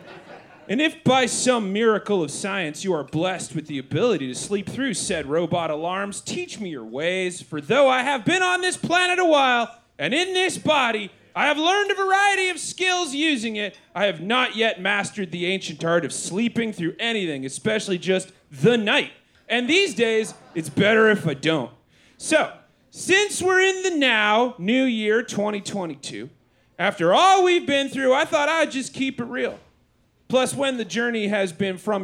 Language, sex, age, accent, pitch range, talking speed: English, male, 30-49, American, 185-265 Hz, 185 wpm